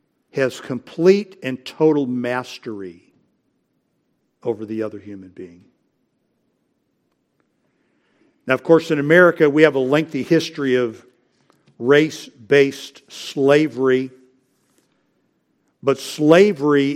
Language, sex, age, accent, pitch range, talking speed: English, male, 60-79, American, 125-160 Hz, 90 wpm